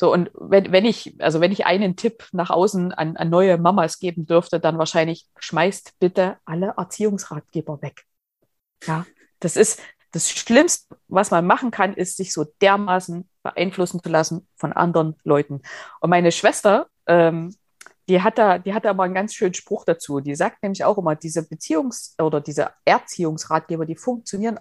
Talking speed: 170 wpm